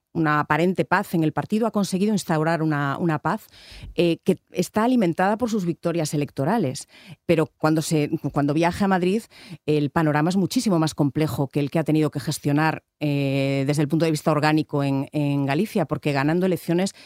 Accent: Spanish